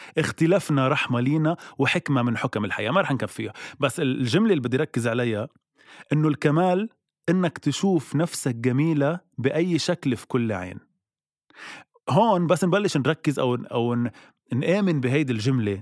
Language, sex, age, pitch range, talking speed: Arabic, male, 30-49, 115-160 Hz, 135 wpm